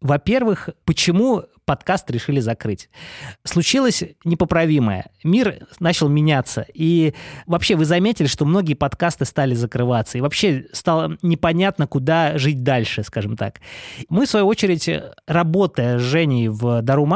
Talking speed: 130 wpm